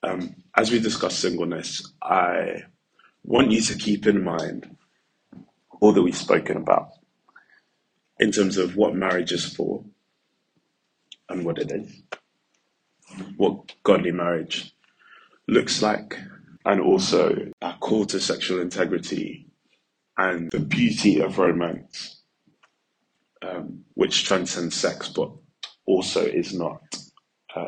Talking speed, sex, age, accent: 115 wpm, male, 20-39, British